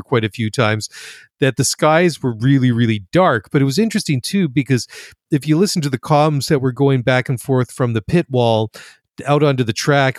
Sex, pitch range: male, 120-145 Hz